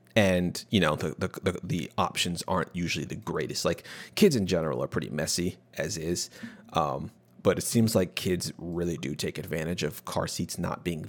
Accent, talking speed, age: American, 195 wpm, 30-49